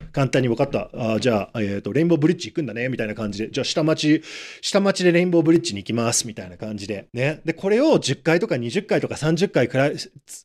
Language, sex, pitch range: Japanese, male, 140-220 Hz